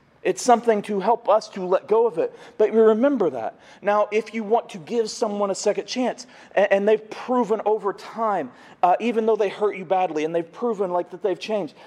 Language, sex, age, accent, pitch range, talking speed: English, male, 40-59, American, 185-225 Hz, 215 wpm